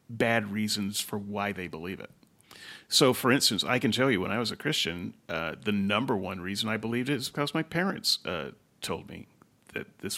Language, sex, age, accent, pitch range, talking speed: English, male, 40-59, American, 105-150 Hz, 210 wpm